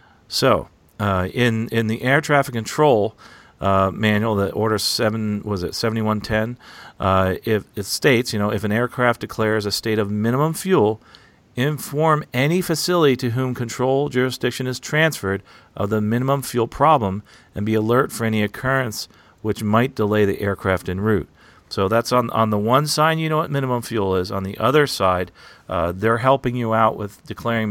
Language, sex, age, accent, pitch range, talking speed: English, male, 40-59, American, 100-125 Hz, 180 wpm